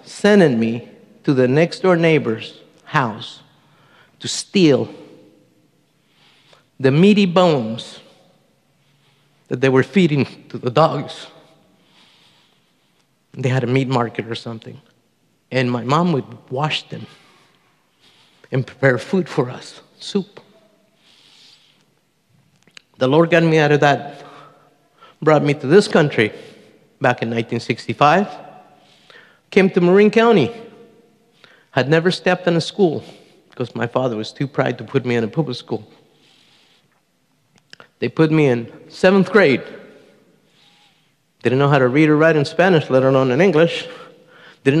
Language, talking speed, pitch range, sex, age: English, 130 wpm, 130-170 Hz, male, 50-69